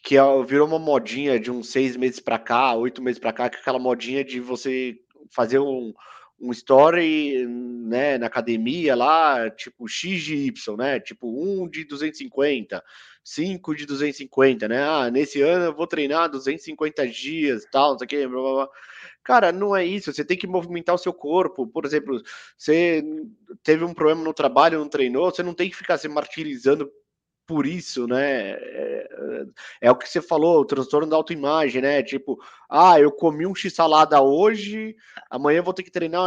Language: Portuguese